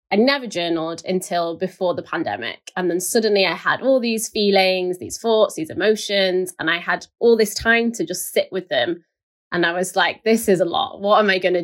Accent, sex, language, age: British, female, English, 20-39